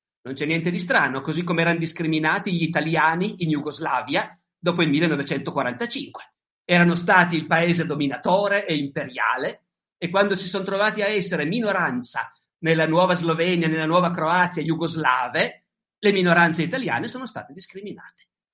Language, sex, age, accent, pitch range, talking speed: Italian, male, 50-69, native, 155-190 Hz, 140 wpm